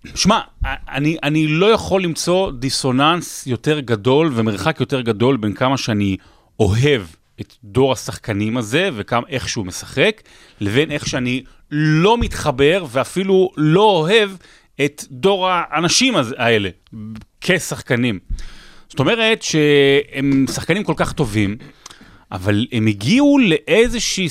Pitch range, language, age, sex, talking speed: 110-165 Hz, Hebrew, 30-49, male, 120 wpm